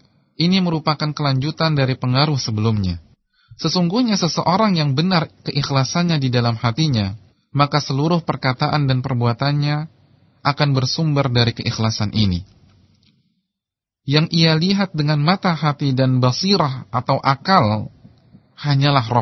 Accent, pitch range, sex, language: Indonesian, 120-165 Hz, male, English